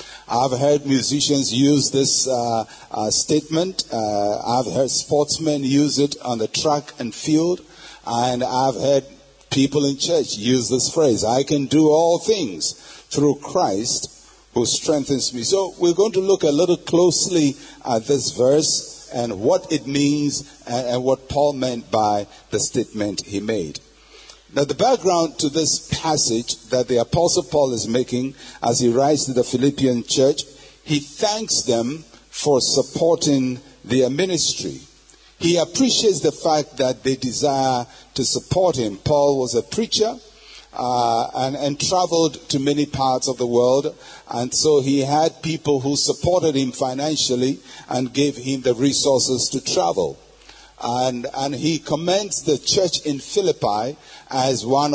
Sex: male